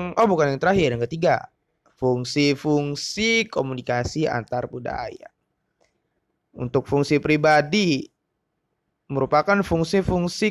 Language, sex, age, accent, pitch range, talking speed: Indonesian, male, 20-39, native, 140-180 Hz, 85 wpm